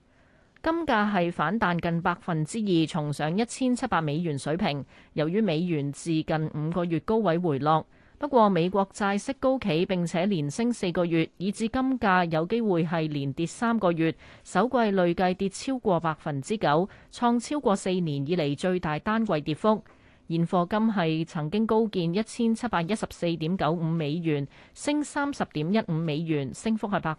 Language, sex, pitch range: Chinese, female, 155-215 Hz